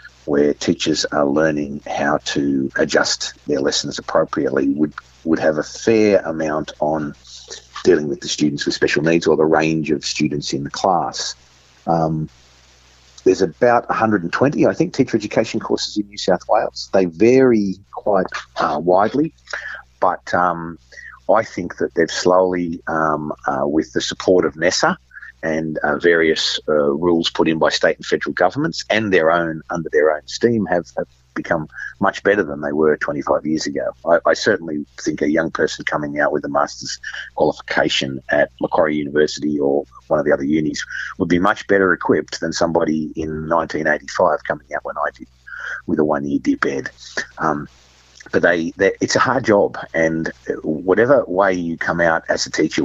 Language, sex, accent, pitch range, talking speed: English, male, Australian, 75-90 Hz, 170 wpm